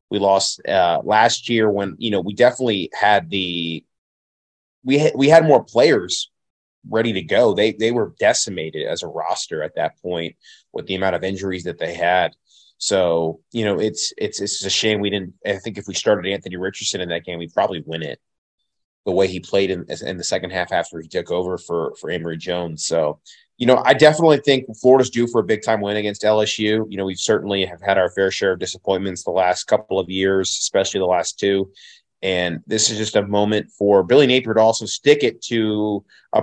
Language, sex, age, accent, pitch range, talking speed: English, male, 30-49, American, 95-110 Hz, 215 wpm